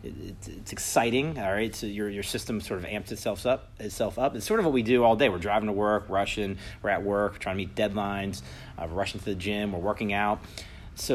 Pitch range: 90-105 Hz